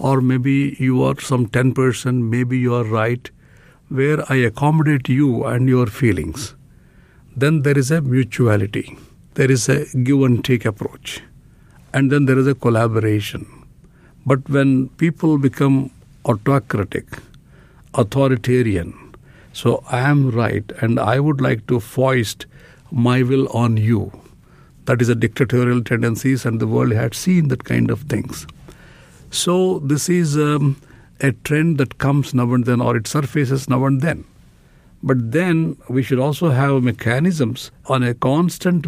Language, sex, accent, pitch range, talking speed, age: English, male, Indian, 120-140 Hz, 150 wpm, 60-79